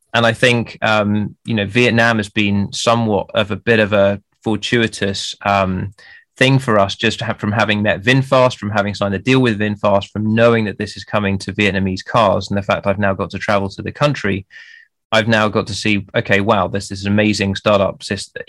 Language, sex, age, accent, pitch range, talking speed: English, male, 20-39, British, 100-110 Hz, 215 wpm